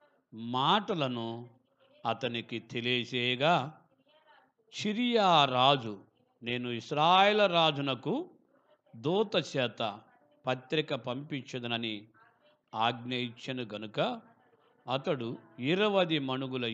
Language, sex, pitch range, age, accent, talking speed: Telugu, male, 115-160 Hz, 50-69, native, 60 wpm